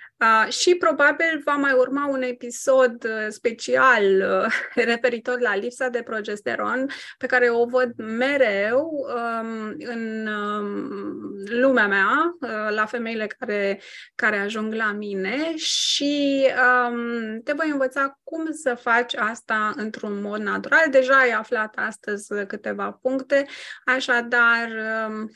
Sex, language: female, Romanian